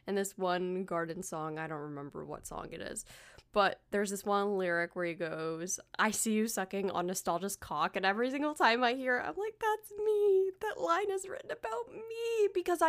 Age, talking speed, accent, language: 10-29, 210 wpm, American, English